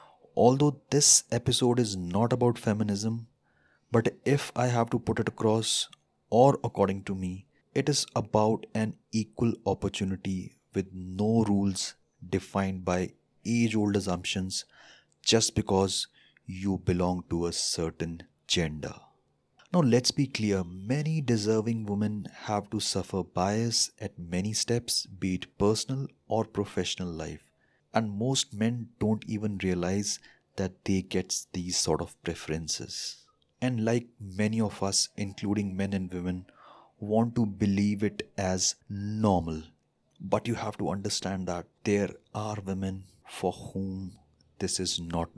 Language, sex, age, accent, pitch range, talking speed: Hindi, male, 30-49, native, 95-115 Hz, 135 wpm